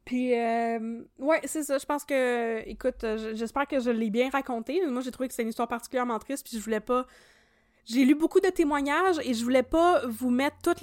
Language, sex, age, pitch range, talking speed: French, female, 20-39, 225-275 Hz, 225 wpm